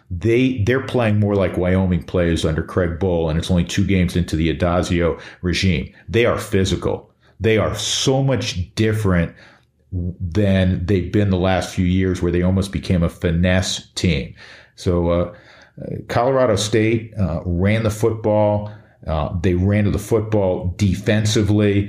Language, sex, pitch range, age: English, male, 90-105 Hz, 50-69